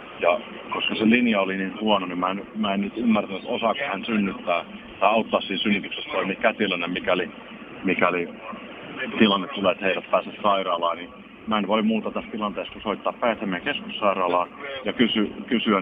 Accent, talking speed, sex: native, 165 wpm, male